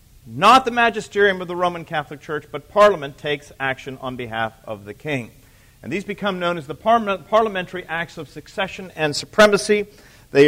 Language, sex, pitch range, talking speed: English, male, 135-195 Hz, 170 wpm